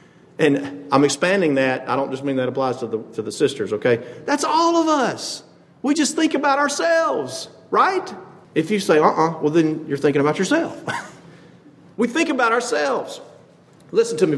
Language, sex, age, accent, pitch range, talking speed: English, male, 40-59, American, 145-200 Hz, 180 wpm